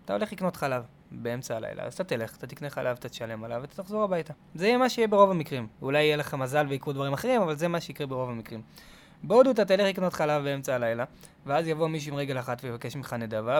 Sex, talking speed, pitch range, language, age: male, 235 wpm, 135-185 Hz, Hebrew, 20-39